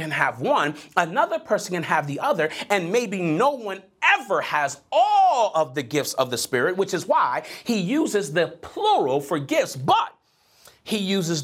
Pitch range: 155-240 Hz